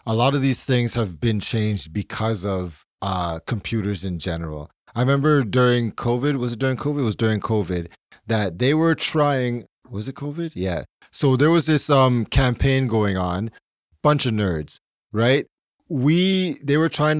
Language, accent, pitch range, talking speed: English, American, 105-135 Hz, 175 wpm